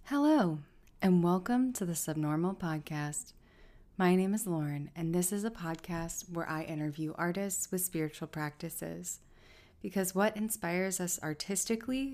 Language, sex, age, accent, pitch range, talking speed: English, female, 20-39, American, 155-185 Hz, 140 wpm